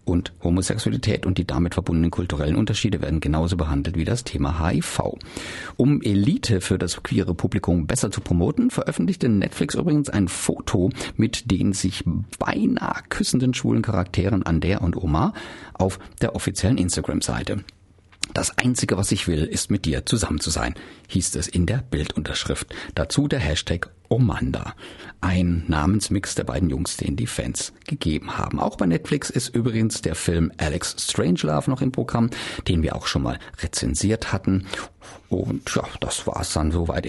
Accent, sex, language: German, male, German